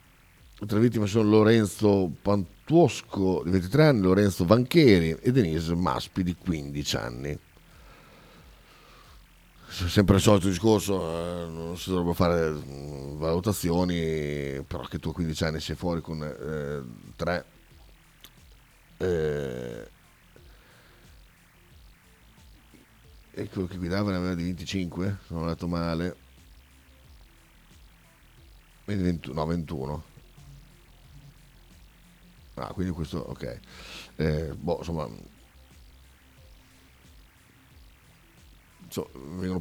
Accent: native